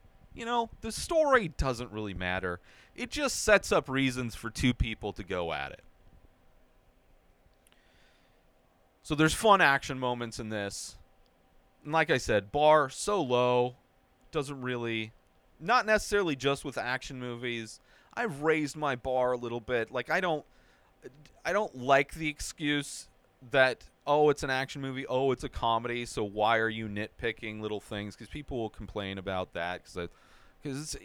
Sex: male